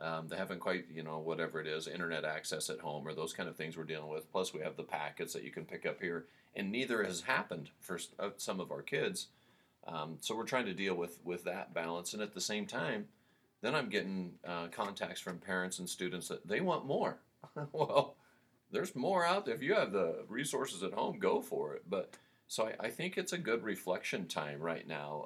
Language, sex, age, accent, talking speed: English, male, 40-59, American, 230 wpm